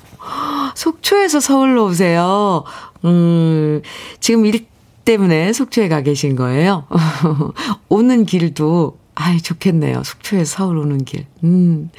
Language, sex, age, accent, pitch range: Korean, female, 50-69, native, 160-225 Hz